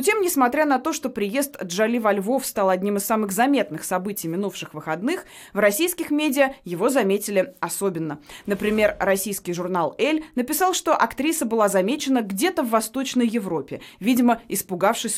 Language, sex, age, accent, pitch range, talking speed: Russian, female, 20-39, native, 190-270 Hz, 150 wpm